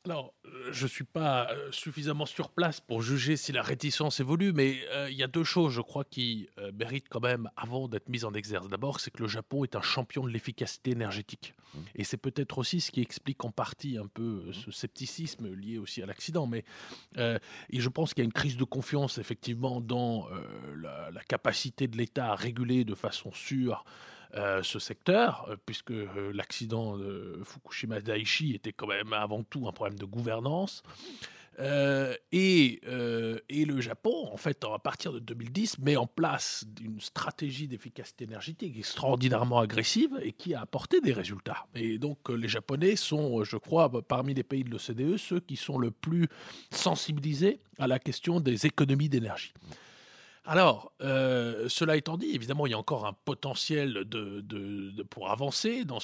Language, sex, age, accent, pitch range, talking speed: French, male, 20-39, French, 115-145 Hz, 190 wpm